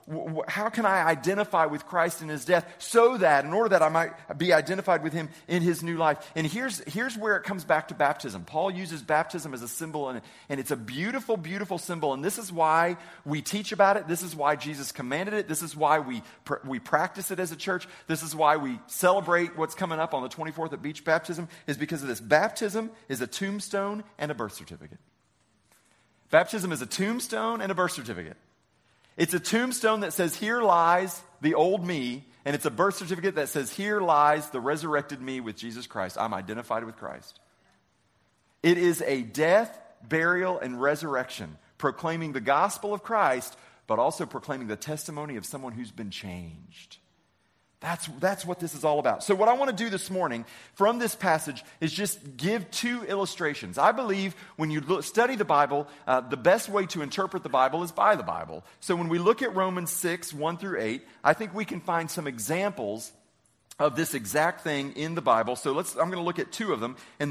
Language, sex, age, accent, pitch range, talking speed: English, male, 40-59, American, 145-190 Hz, 205 wpm